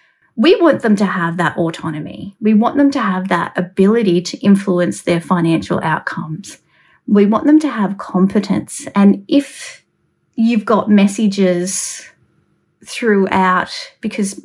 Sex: female